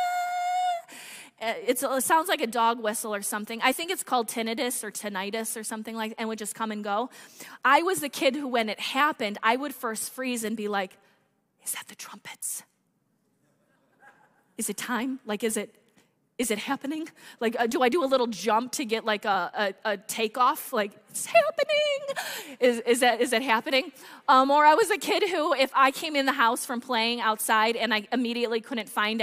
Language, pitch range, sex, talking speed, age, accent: English, 225-290 Hz, female, 200 wpm, 20-39, American